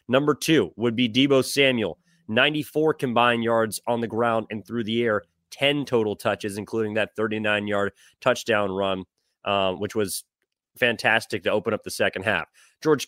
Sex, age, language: male, 30-49, English